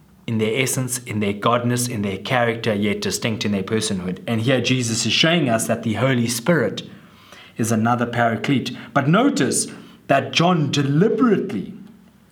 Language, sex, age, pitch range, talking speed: English, male, 20-39, 120-175 Hz, 155 wpm